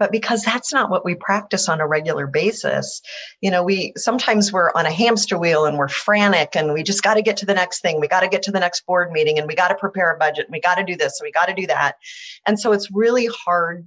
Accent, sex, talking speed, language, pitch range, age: American, female, 285 wpm, English, 155-210 Hz, 40-59